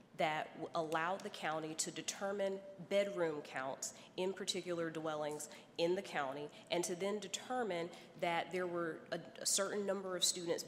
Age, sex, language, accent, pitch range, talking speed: 30-49, female, English, American, 160-195 Hz, 145 wpm